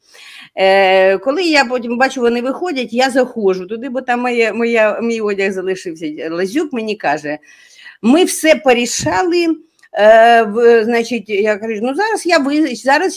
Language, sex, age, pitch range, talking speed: Ukrainian, female, 50-69, 185-270 Hz, 135 wpm